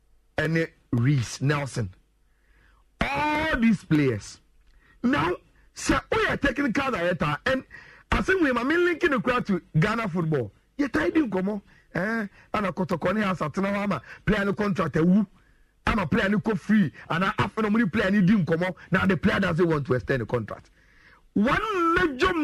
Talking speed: 185 wpm